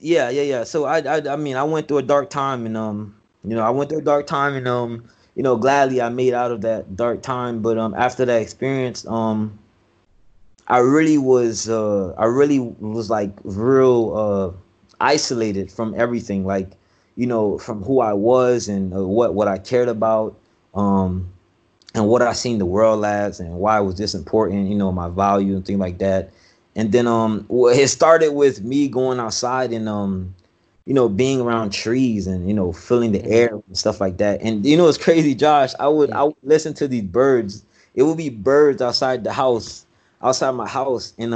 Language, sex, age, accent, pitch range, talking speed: English, male, 20-39, American, 105-140 Hz, 205 wpm